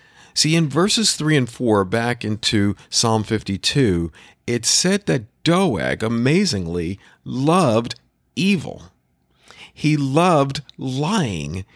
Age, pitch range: 50-69, 95-145 Hz